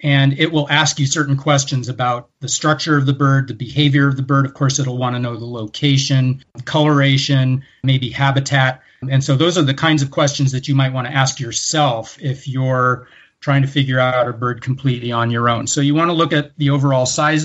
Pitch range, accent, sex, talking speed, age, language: 130-145 Hz, American, male, 225 wpm, 30-49, English